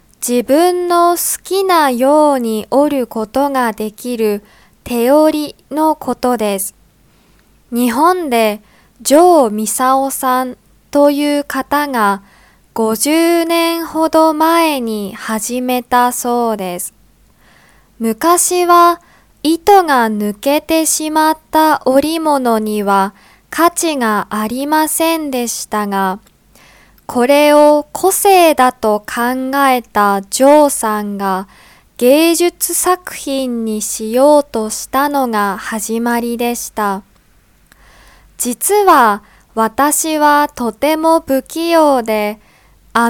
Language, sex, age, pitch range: Japanese, female, 20-39, 225-310 Hz